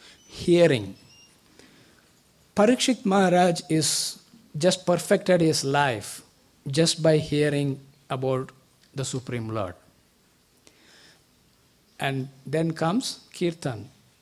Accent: Indian